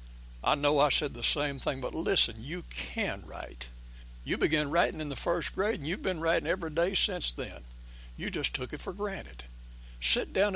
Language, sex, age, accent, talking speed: English, male, 60-79, American, 200 wpm